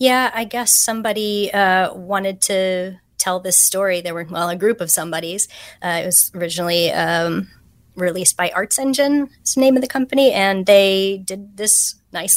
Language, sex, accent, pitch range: English, female, American, 170-195 Hz